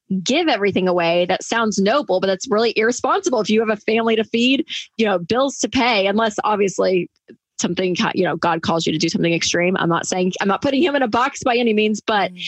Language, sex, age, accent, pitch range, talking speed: English, female, 20-39, American, 185-230 Hz, 230 wpm